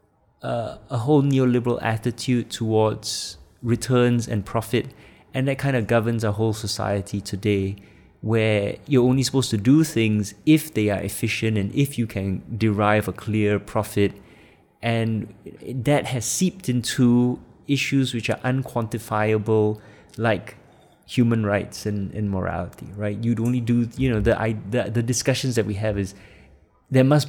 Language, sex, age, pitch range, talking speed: English, male, 20-39, 105-130 Hz, 150 wpm